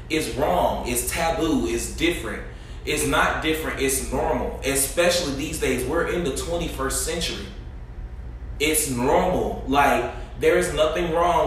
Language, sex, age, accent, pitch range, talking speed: English, male, 20-39, American, 120-140 Hz, 135 wpm